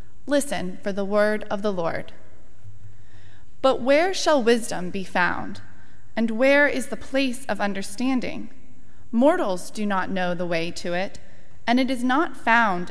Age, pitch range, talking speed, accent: 20-39, 185-250 Hz, 155 wpm, American